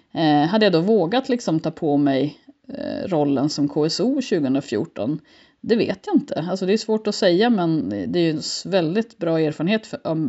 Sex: female